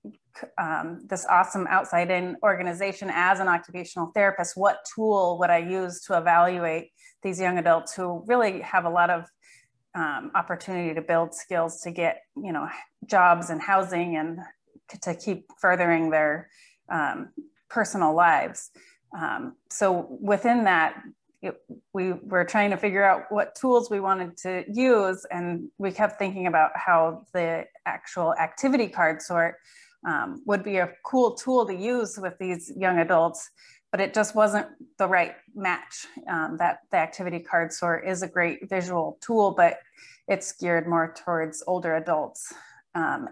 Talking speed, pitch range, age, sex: 150 wpm, 175-210 Hz, 30-49, female